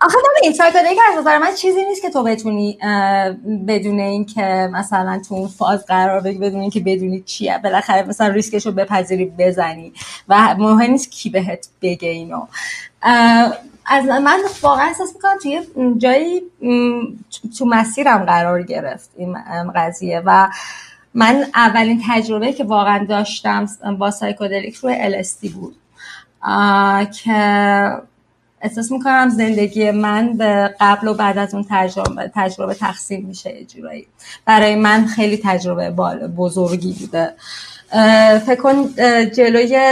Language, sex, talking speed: Persian, female, 130 wpm